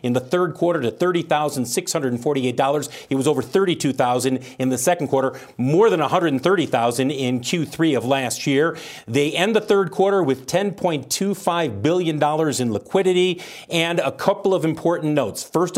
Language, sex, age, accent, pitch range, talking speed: English, male, 40-59, American, 135-170 Hz, 150 wpm